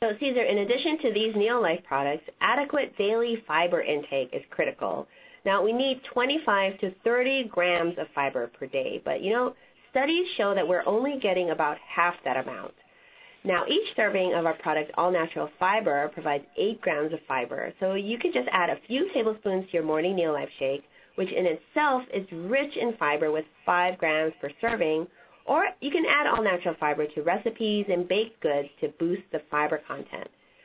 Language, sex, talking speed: English, female, 180 wpm